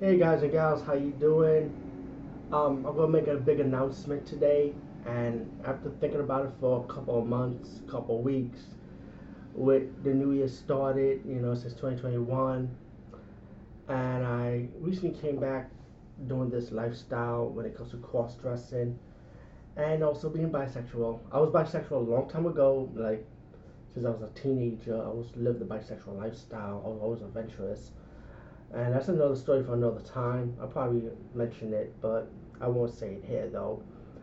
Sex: male